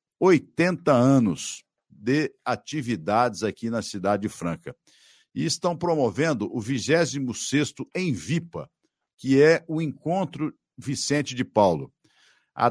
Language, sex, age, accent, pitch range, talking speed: Portuguese, male, 60-79, Brazilian, 115-155 Hz, 115 wpm